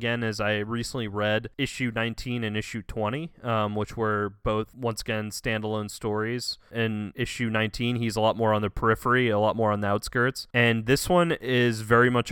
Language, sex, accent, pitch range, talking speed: English, male, American, 105-120 Hz, 195 wpm